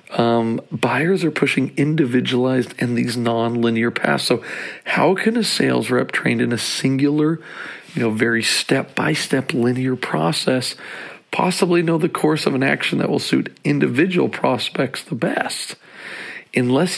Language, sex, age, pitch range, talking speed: English, male, 40-59, 115-145 Hz, 140 wpm